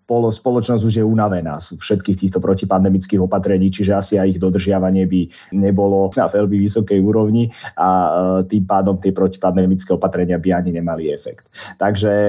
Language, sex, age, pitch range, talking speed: Slovak, male, 30-49, 100-135 Hz, 150 wpm